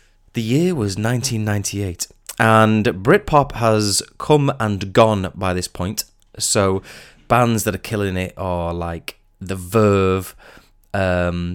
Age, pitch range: 20-39, 90-110 Hz